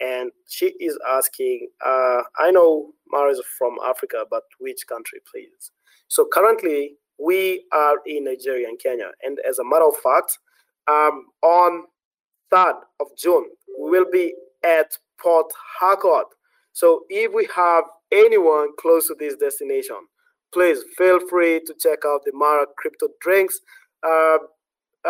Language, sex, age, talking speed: English, male, 20-39, 140 wpm